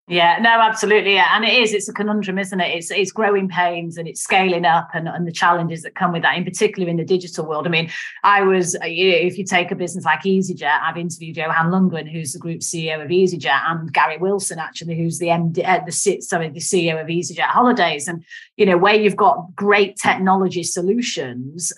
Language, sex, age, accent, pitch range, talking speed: English, female, 30-49, British, 170-200 Hz, 225 wpm